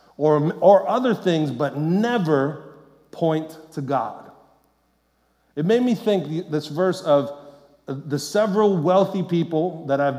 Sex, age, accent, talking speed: male, 40-59, American, 130 wpm